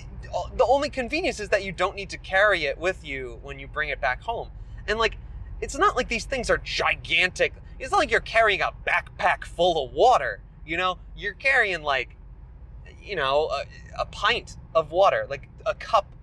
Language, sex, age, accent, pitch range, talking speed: English, male, 20-39, American, 130-175 Hz, 195 wpm